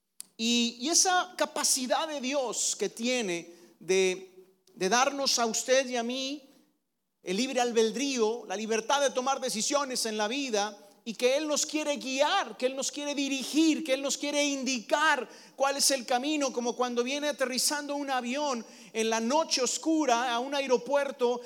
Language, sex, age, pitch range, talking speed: Spanish, male, 40-59, 235-290 Hz, 170 wpm